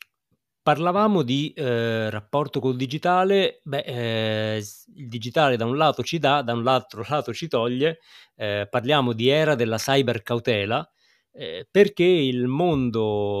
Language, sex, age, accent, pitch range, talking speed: Italian, male, 30-49, native, 105-130 Hz, 150 wpm